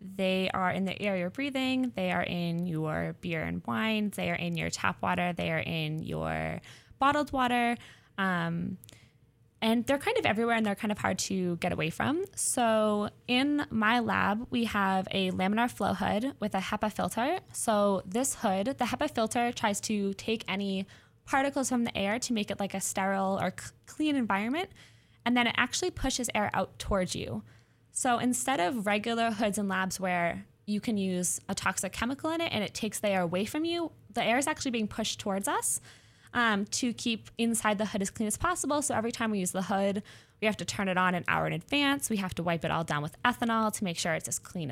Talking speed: 215 wpm